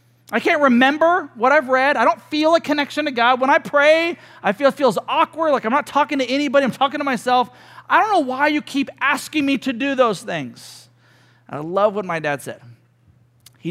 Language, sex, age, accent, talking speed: English, male, 40-59, American, 220 wpm